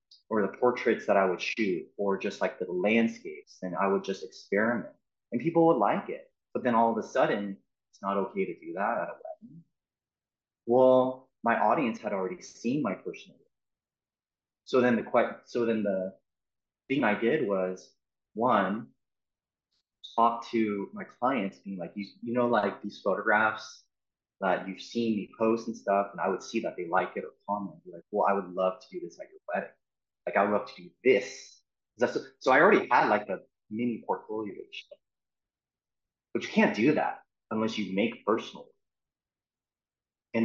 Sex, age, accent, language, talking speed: male, 30-49, American, English, 180 wpm